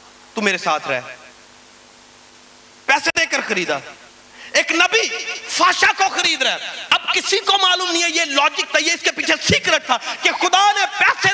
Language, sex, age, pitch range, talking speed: Urdu, male, 30-49, 280-370 Hz, 175 wpm